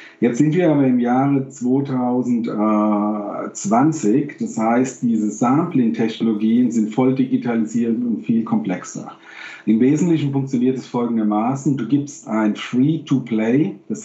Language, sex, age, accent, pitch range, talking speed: German, male, 50-69, German, 110-135 Hz, 115 wpm